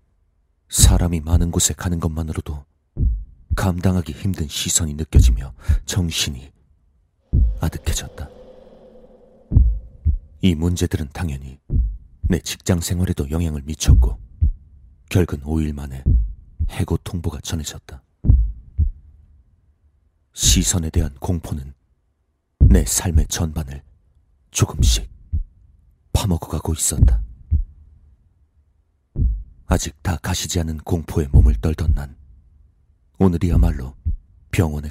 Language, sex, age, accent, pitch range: Korean, male, 40-59, native, 75-85 Hz